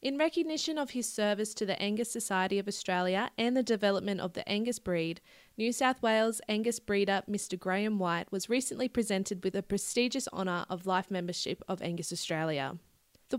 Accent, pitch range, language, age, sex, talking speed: Australian, 180-225 Hz, English, 20-39, female, 180 wpm